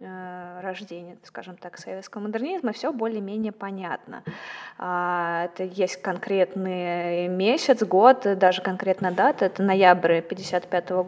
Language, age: Russian, 20-39